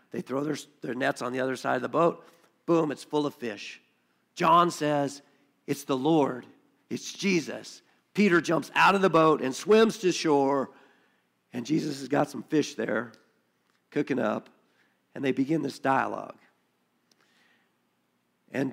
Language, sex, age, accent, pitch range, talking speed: English, male, 50-69, American, 130-165 Hz, 155 wpm